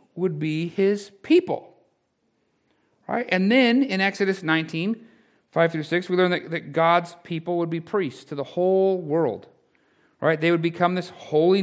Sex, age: male, 40-59